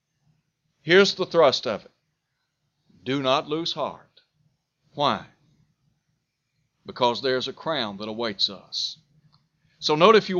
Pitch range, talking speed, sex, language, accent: 145-175 Hz, 125 wpm, male, English, American